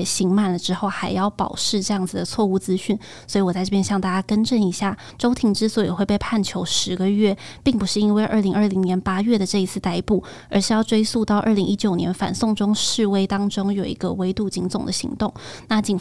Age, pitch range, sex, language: 20-39, 190-215 Hz, female, Chinese